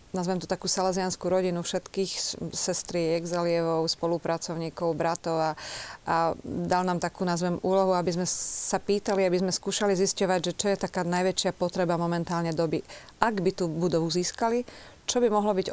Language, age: Slovak, 30-49